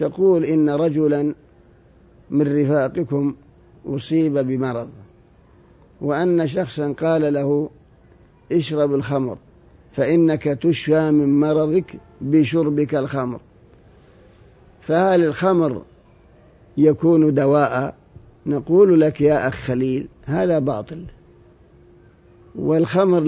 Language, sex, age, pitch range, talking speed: Arabic, male, 50-69, 140-160 Hz, 80 wpm